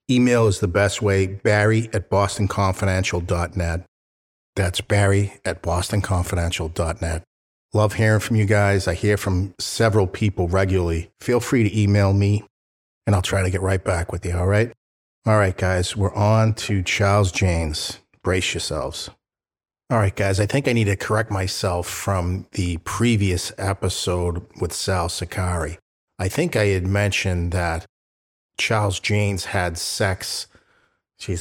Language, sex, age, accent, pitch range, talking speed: English, male, 50-69, American, 90-105 Hz, 145 wpm